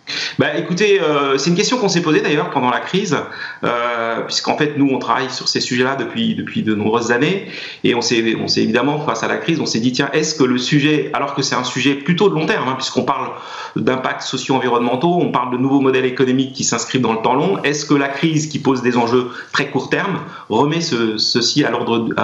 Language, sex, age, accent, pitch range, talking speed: French, male, 40-59, French, 125-155 Hz, 235 wpm